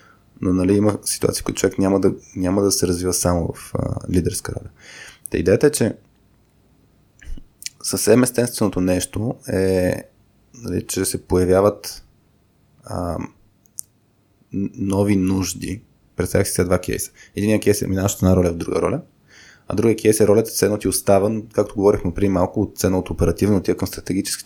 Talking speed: 165 wpm